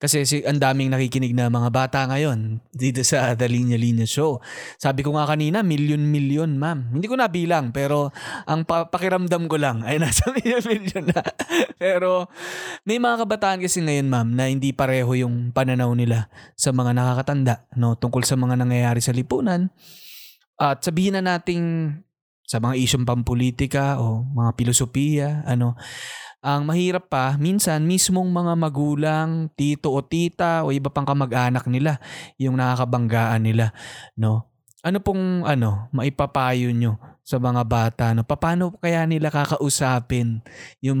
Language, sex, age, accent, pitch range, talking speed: Filipino, male, 20-39, native, 125-155 Hz, 150 wpm